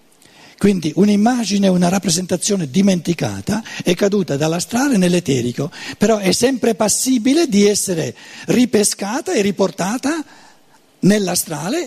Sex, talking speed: male, 95 wpm